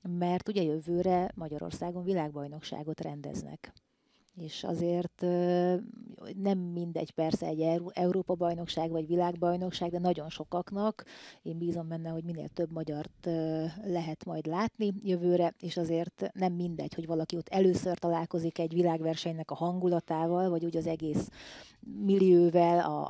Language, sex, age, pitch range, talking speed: Hungarian, female, 30-49, 165-180 Hz, 125 wpm